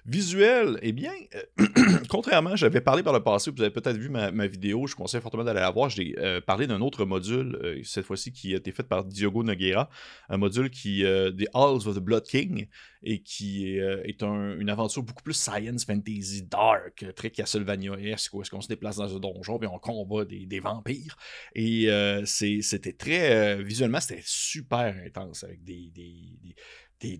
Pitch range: 100-120 Hz